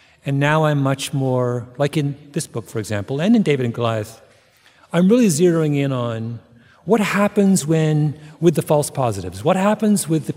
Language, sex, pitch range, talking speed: English, male, 115-150 Hz, 185 wpm